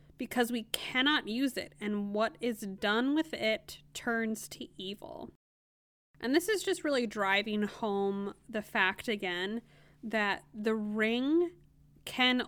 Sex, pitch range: female, 205-245 Hz